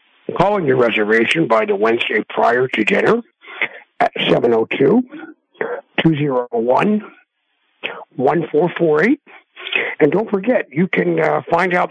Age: 60-79